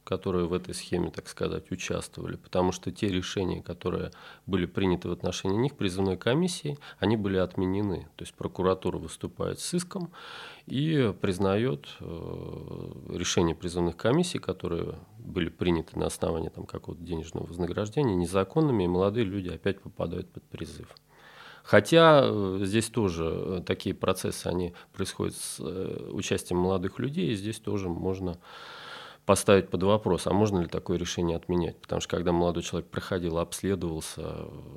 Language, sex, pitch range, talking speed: Russian, male, 85-105 Hz, 140 wpm